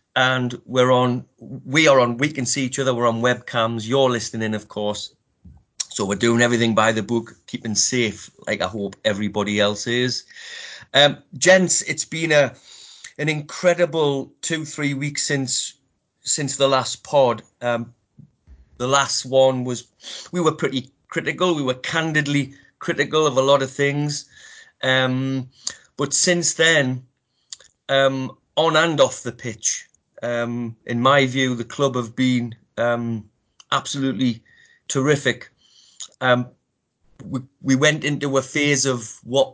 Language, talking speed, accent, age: English, 145 wpm, British, 30-49